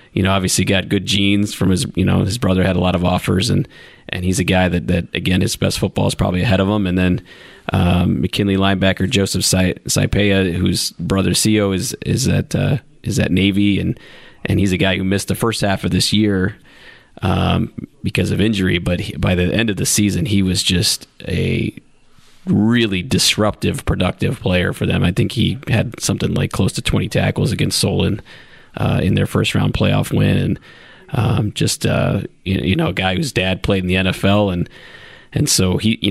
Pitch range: 90-105 Hz